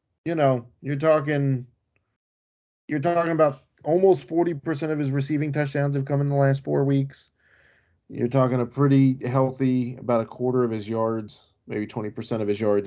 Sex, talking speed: male, 170 wpm